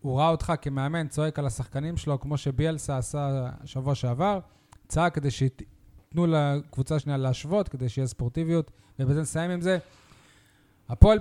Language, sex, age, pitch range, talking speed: Hebrew, male, 20-39, 130-155 Hz, 150 wpm